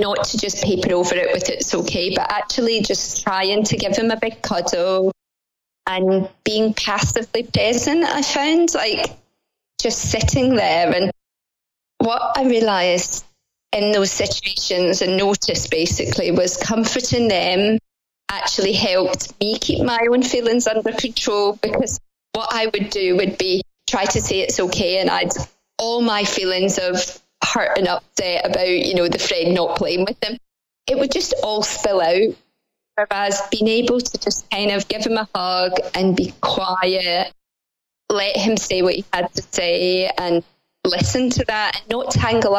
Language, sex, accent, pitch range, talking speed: English, female, British, 185-230 Hz, 165 wpm